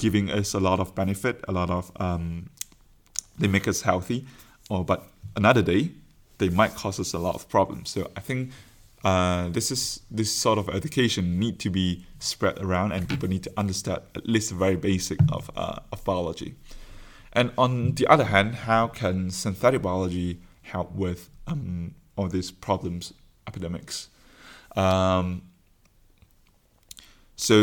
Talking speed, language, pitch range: 160 wpm, Slovak, 95-110 Hz